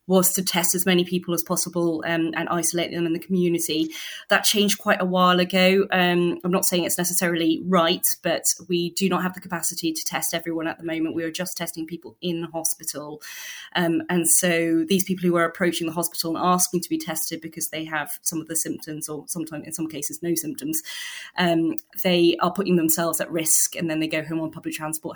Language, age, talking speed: English, 20-39, 220 wpm